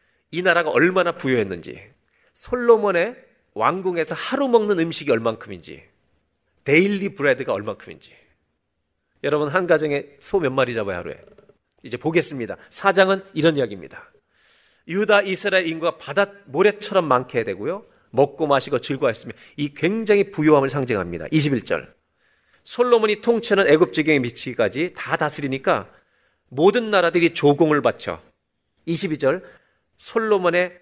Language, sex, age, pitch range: Korean, male, 40-59, 145-205 Hz